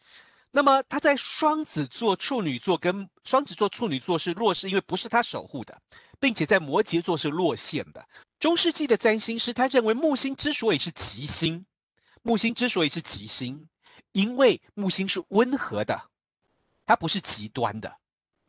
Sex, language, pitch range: male, Chinese, 155-250 Hz